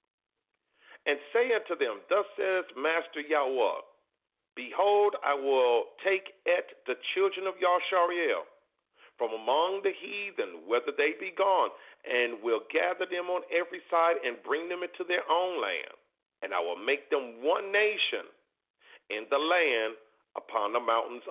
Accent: American